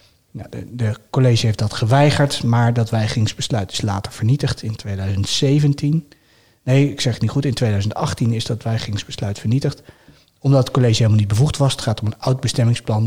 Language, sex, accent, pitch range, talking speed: Dutch, male, Dutch, 110-135 Hz, 170 wpm